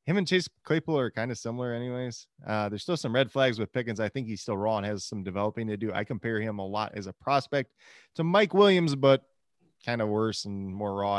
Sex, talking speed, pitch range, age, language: male, 245 wpm, 100-125 Hz, 20-39, English